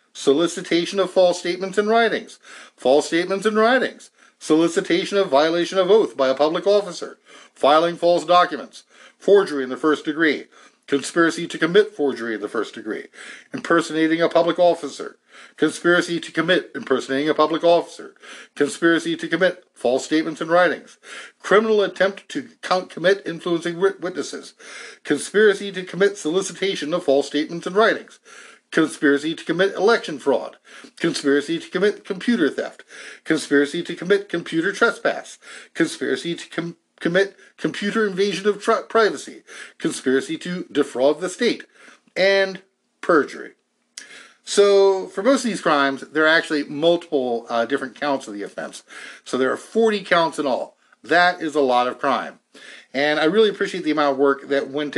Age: 60-79